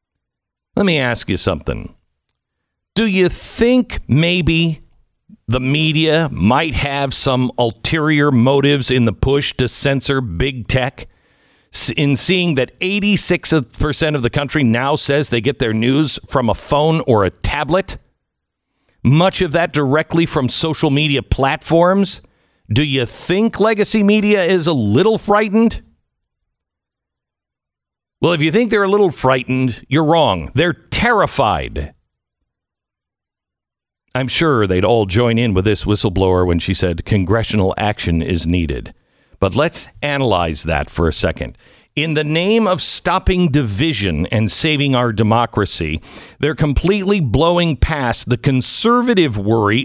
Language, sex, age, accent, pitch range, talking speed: English, male, 50-69, American, 110-170 Hz, 135 wpm